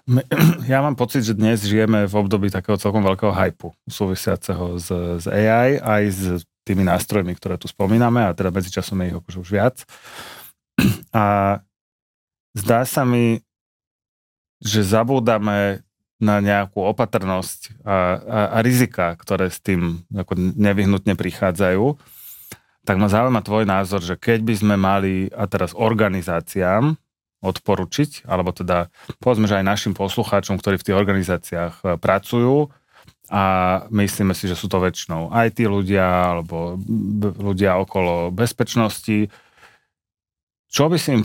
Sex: male